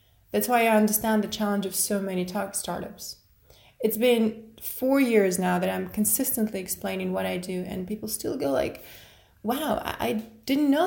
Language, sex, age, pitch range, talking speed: English, female, 20-39, 195-255 Hz, 175 wpm